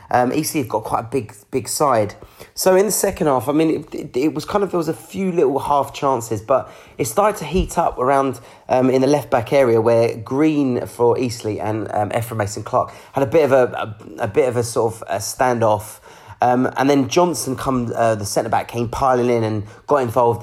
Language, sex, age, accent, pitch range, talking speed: English, male, 30-49, British, 115-145 Hz, 230 wpm